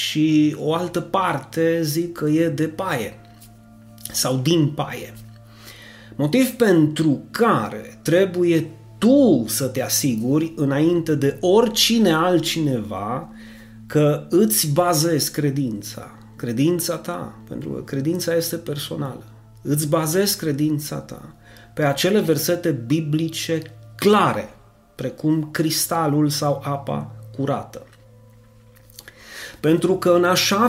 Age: 30-49